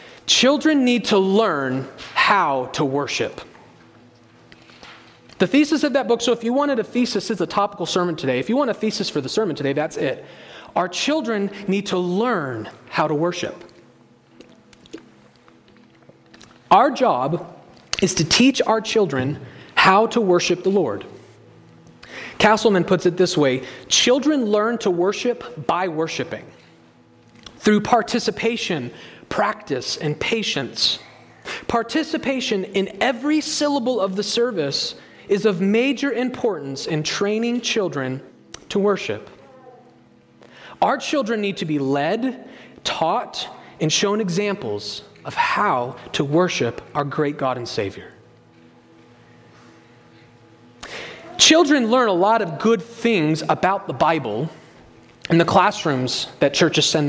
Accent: American